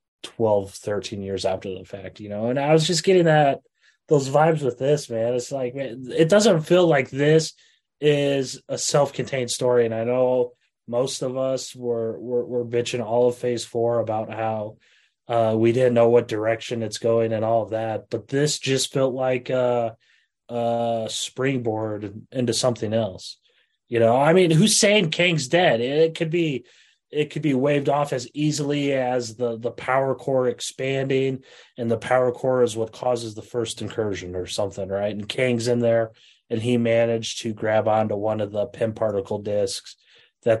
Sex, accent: male, American